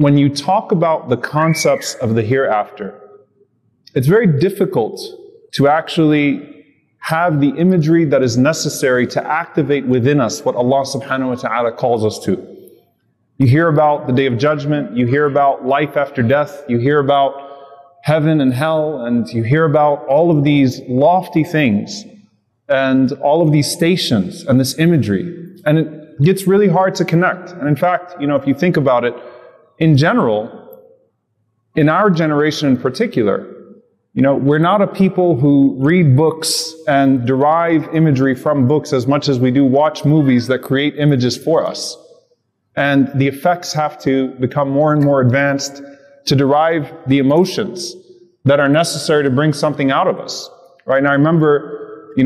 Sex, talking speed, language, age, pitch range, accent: male, 170 wpm, English, 30-49, 135-160 Hz, American